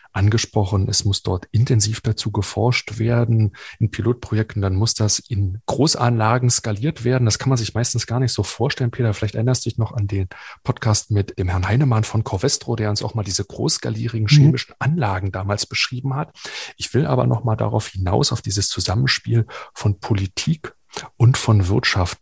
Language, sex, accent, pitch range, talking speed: German, male, German, 105-130 Hz, 180 wpm